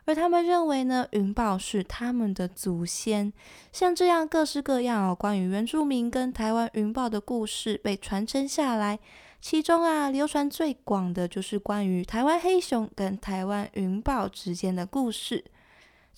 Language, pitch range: Chinese, 205-280 Hz